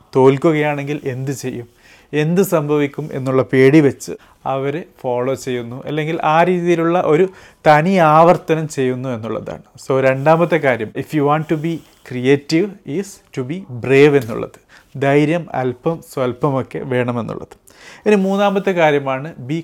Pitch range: 130-160 Hz